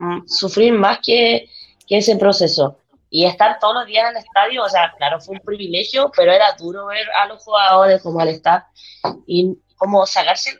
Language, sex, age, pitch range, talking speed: Spanish, female, 20-39, 170-220 Hz, 185 wpm